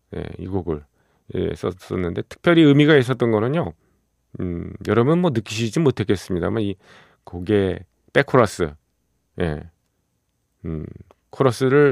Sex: male